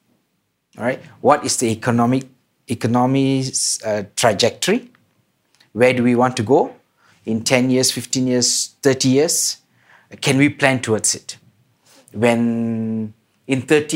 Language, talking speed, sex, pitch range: English, 130 wpm, male, 115-135 Hz